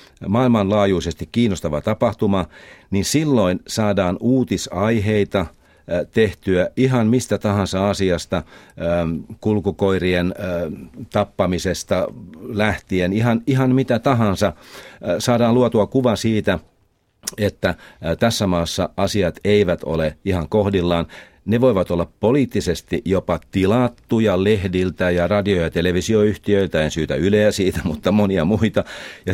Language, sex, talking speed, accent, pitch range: Finnish, male, 100 wpm, native, 80-105 Hz